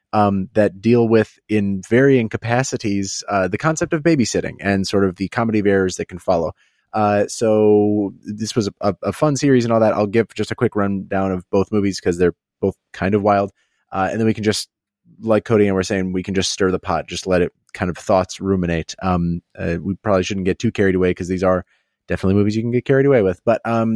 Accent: American